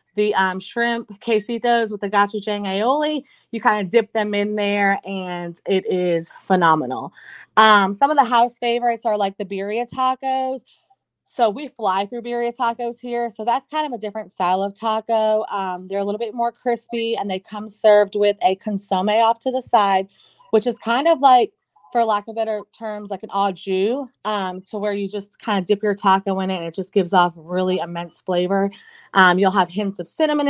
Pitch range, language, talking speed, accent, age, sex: 195-235 Hz, English, 205 wpm, American, 30-49, female